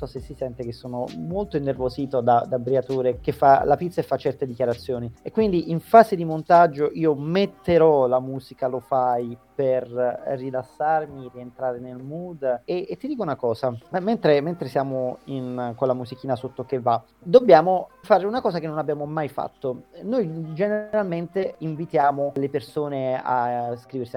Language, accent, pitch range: Italian, native, 130-185 Hz